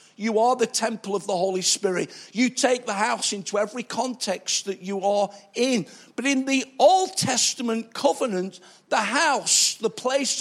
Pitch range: 225-275 Hz